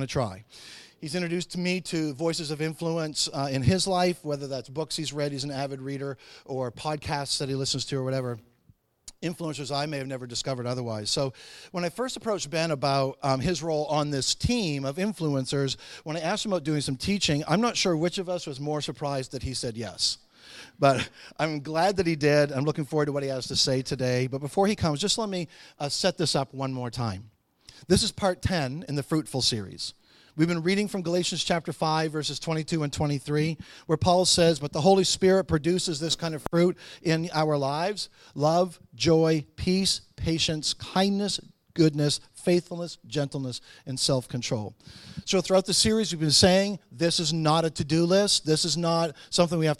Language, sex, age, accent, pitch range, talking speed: English, male, 40-59, American, 140-175 Hz, 200 wpm